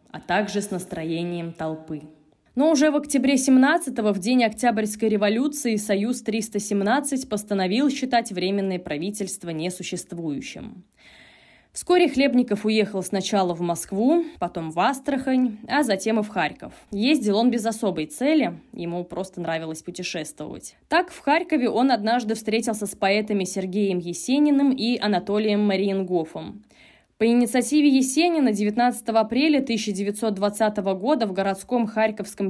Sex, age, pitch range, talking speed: female, 20-39, 185-245 Hz, 120 wpm